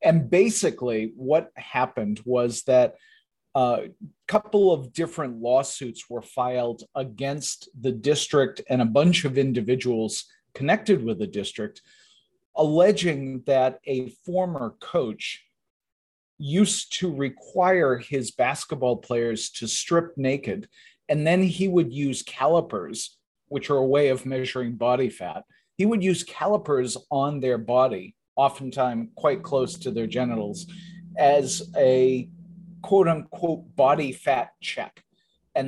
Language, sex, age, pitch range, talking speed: English, male, 40-59, 125-170 Hz, 125 wpm